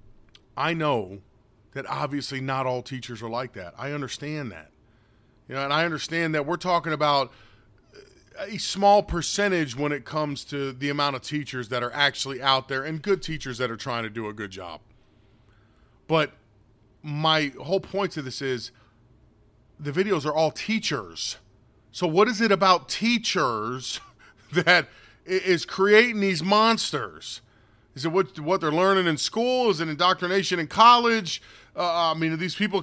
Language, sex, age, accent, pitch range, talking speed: English, male, 40-59, American, 125-180 Hz, 165 wpm